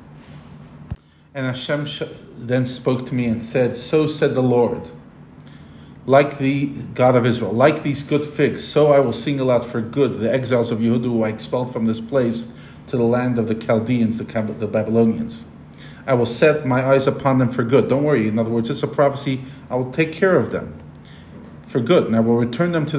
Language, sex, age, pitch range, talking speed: English, male, 40-59, 115-140 Hz, 200 wpm